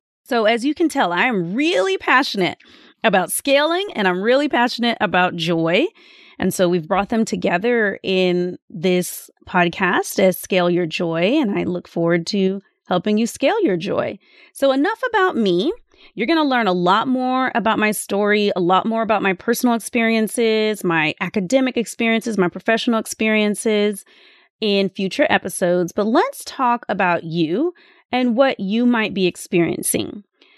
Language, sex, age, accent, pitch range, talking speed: English, female, 30-49, American, 185-250 Hz, 160 wpm